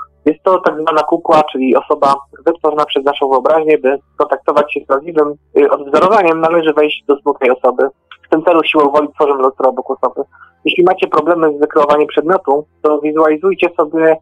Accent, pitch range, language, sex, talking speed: native, 150-175 Hz, Polish, male, 170 wpm